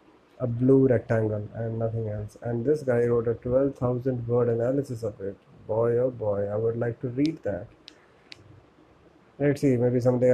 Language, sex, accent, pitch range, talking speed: English, male, Indian, 115-135 Hz, 170 wpm